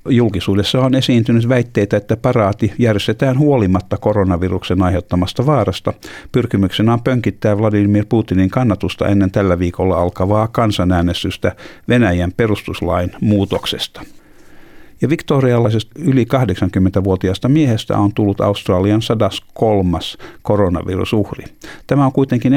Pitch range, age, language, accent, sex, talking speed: 95-120 Hz, 50-69, Finnish, native, male, 100 wpm